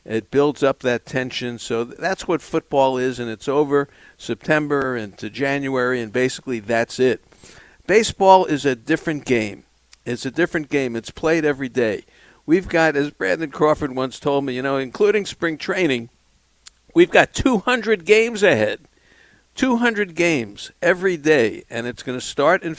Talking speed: 165 wpm